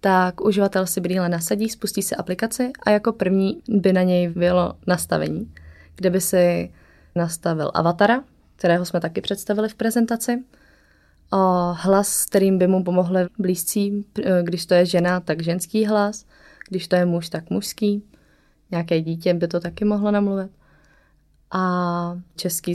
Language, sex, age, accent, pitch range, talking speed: Czech, female, 20-39, native, 175-200 Hz, 145 wpm